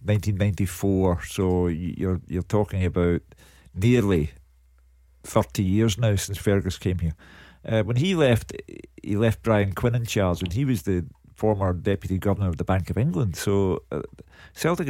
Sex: male